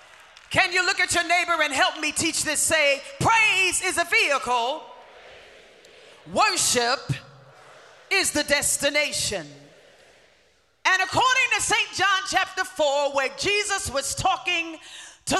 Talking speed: 125 wpm